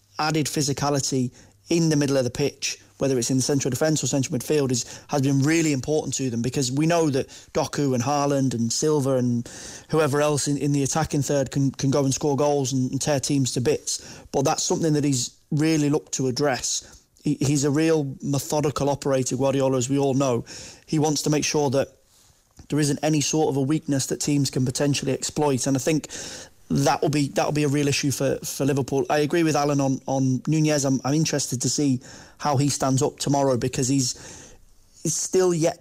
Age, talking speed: 30-49, 210 wpm